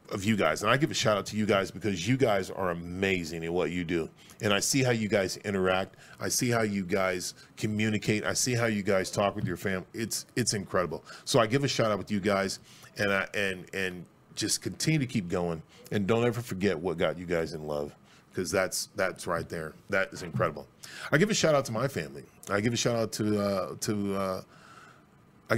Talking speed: 235 wpm